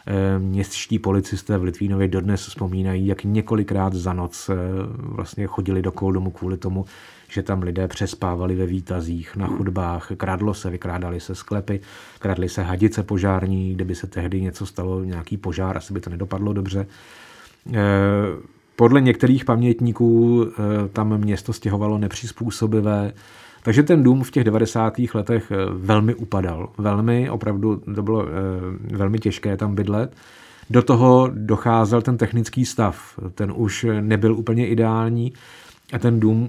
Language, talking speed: Czech, 140 wpm